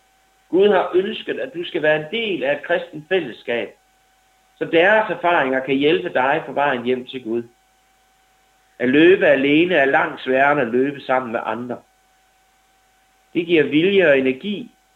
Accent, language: native, Danish